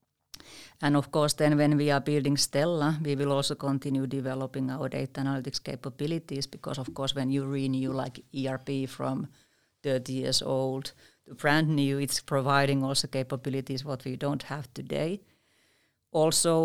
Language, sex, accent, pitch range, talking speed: Finnish, female, native, 135-150 Hz, 155 wpm